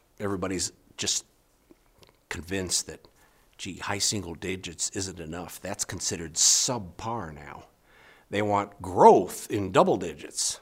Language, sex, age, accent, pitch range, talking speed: English, male, 60-79, American, 90-120 Hz, 115 wpm